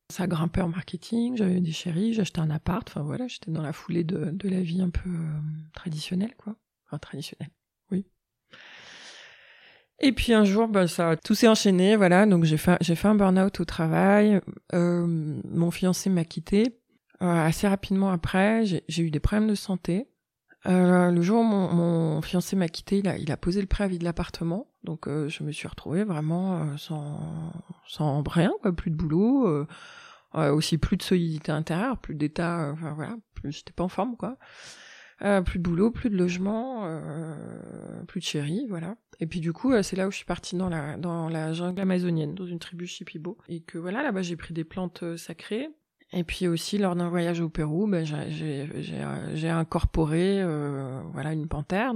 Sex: female